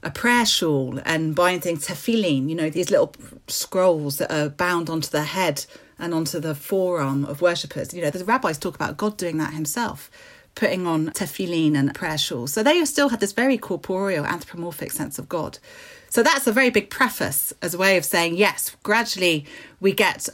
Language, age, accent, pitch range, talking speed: English, 40-59, British, 155-195 Hz, 190 wpm